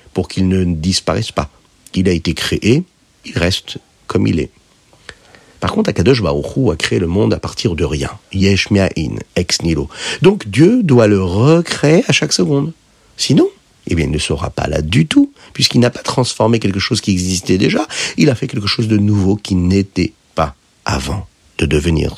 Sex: male